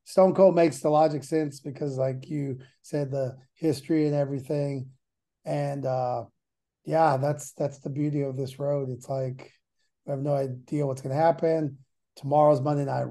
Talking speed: 165 wpm